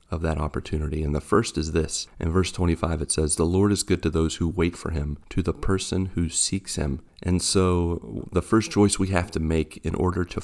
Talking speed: 235 wpm